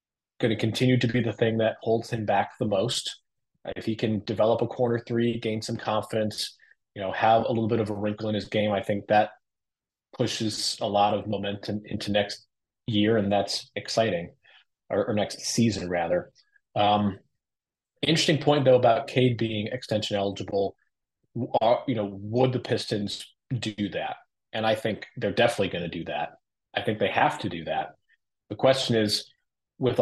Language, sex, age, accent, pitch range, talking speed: English, male, 30-49, American, 100-115 Hz, 180 wpm